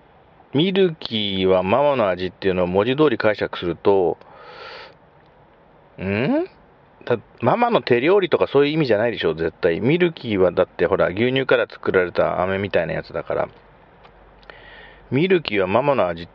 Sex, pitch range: male, 100-170 Hz